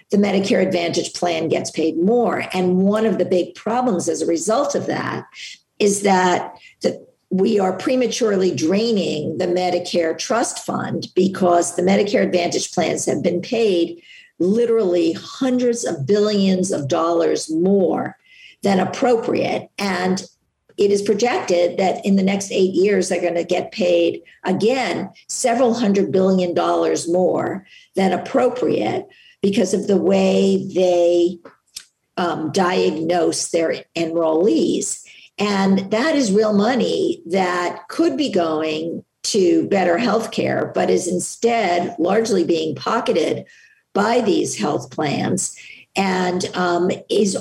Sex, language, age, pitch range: female, English, 50-69, 175-220 Hz